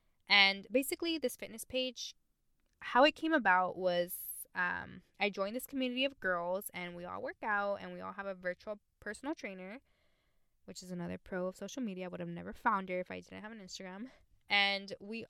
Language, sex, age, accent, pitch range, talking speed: English, female, 10-29, American, 185-235 Hz, 200 wpm